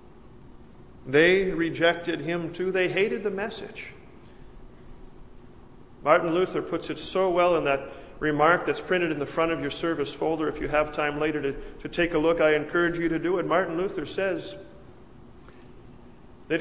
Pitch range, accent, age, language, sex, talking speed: 160-195 Hz, American, 40-59, English, male, 165 wpm